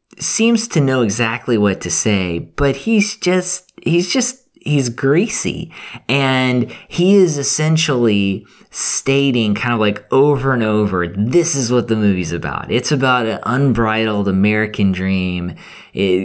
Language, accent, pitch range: English, American, 100-140 Hz